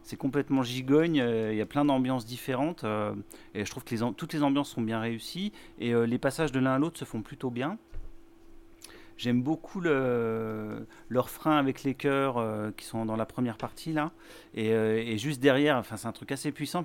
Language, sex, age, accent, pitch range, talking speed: French, male, 40-59, French, 110-145 Hz, 215 wpm